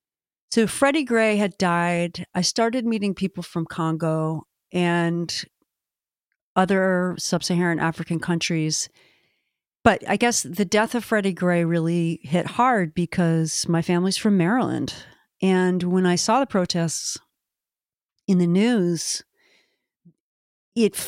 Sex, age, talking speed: female, 40-59, 120 wpm